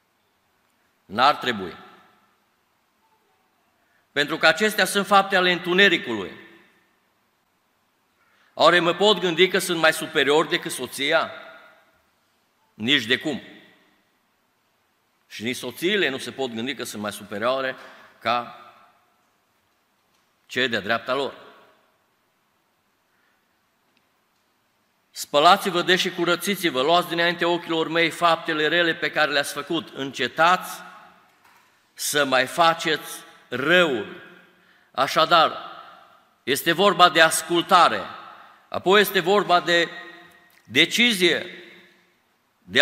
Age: 50-69